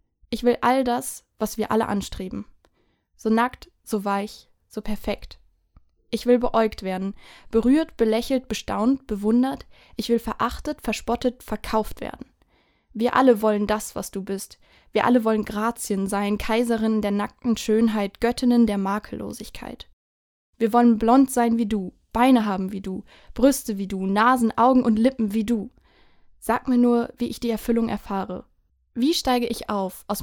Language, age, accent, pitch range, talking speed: German, 10-29, German, 205-240 Hz, 155 wpm